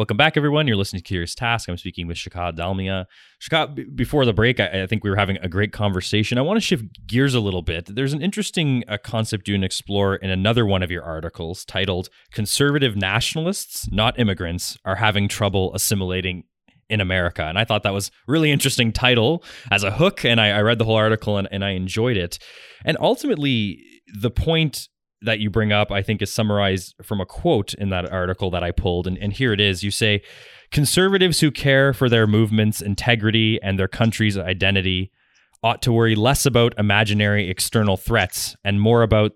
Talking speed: 205 wpm